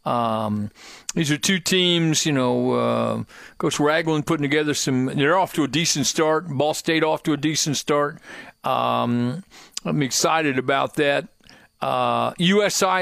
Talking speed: 150 wpm